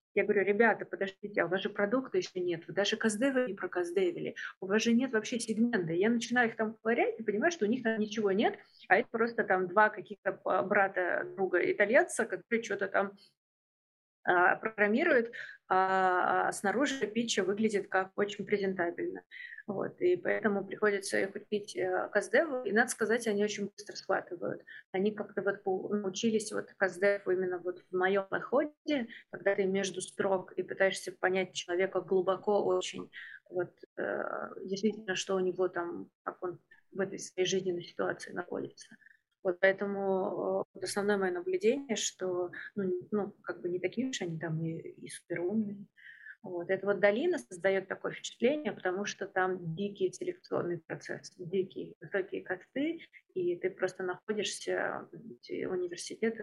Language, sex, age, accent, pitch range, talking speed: Russian, female, 30-49, native, 185-215 Hz, 155 wpm